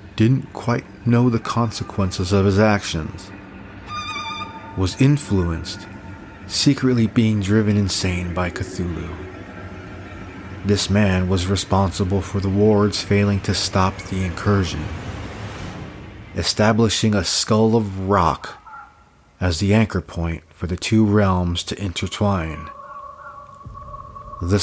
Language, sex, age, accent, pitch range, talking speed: English, male, 30-49, American, 90-105 Hz, 105 wpm